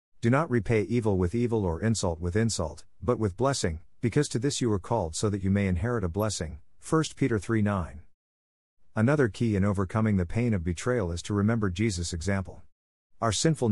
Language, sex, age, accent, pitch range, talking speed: English, male, 50-69, American, 90-115 Hz, 195 wpm